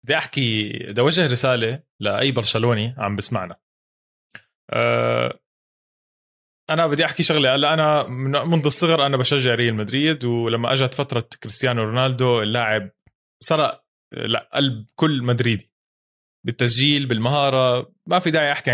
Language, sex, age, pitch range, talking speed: Arabic, male, 20-39, 120-155 Hz, 125 wpm